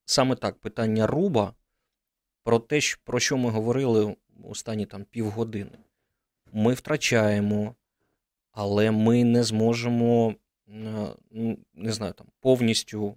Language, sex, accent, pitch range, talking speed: Ukrainian, male, native, 105-120 Hz, 100 wpm